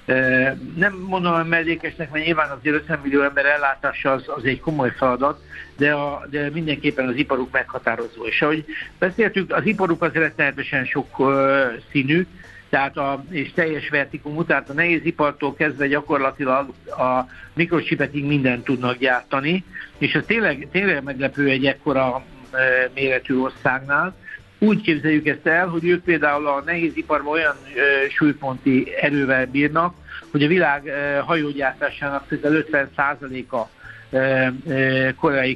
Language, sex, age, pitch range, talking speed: Hungarian, male, 60-79, 135-155 Hz, 140 wpm